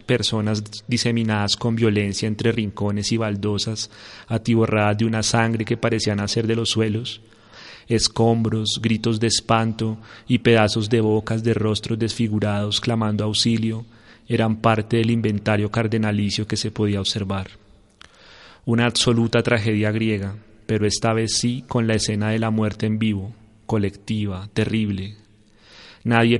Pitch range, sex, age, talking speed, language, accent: 105-115 Hz, male, 30-49, 135 wpm, Spanish, Colombian